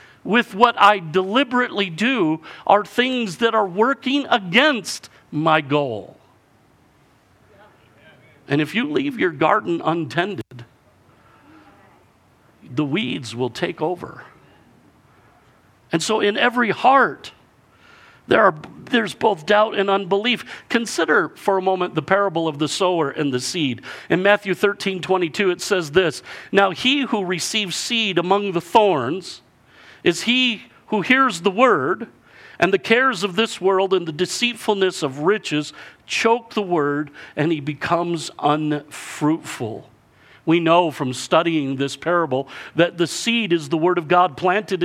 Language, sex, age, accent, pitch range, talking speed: English, male, 50-69, American, 155-220 Hz, 140 wpm